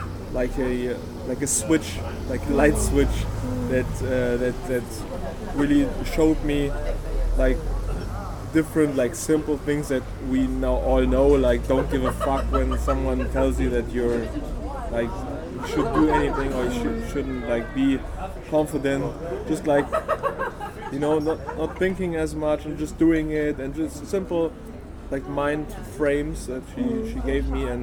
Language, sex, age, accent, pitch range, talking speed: English, male, 20-39, German, 120-140 Hz, 160 wpm